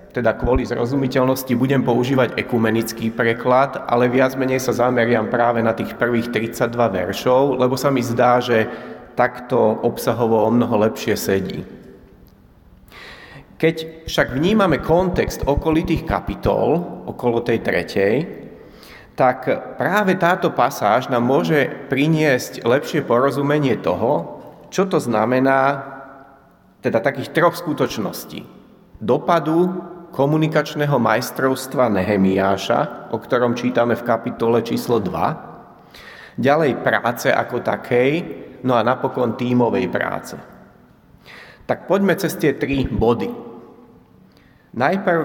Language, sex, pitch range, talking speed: Slovak, male, 120-155 Hz, 110 wpm